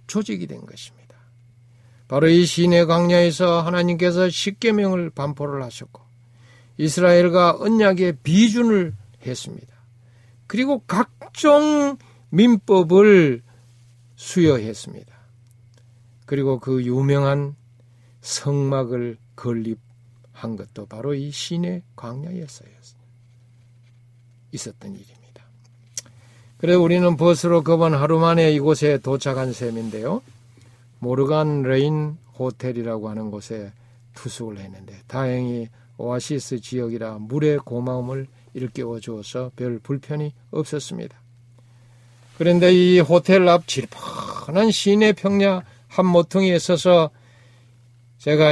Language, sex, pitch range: Korean, male, 120-175 Hz